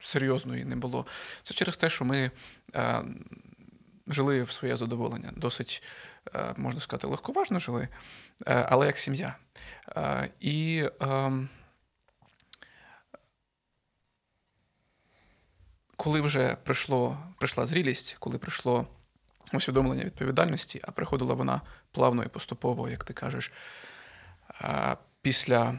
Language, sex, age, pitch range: Ukrainian, male, 30-49, 125-165 Hz